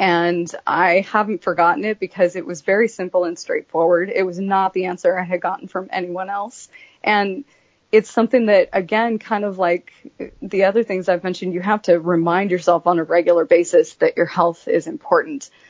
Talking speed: 190 wpm